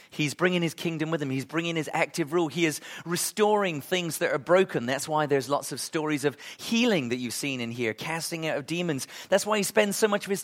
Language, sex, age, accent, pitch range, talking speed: English, male, 40-59, British, 130-185 Hz, 245 wpm